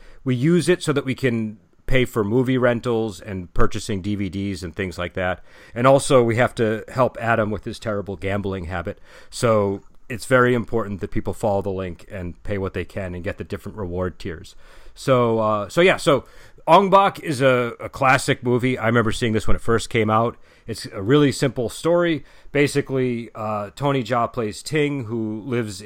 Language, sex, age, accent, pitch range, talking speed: English, male, 40-59, American, 100-130 Hz, 195 wpm